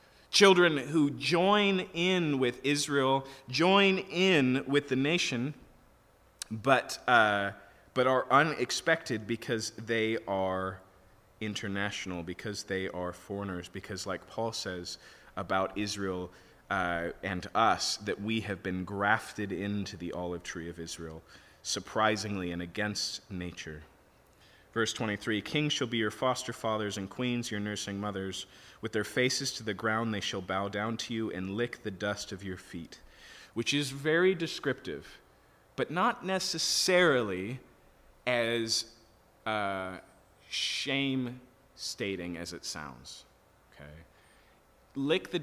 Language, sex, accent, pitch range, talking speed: English, male, American, 95-130 Hz, 125 wpm